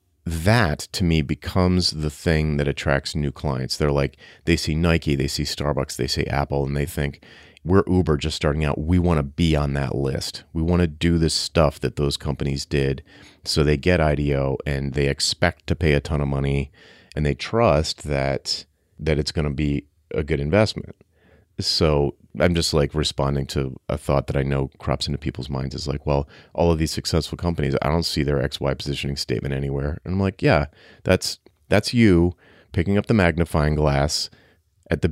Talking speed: 200 wpm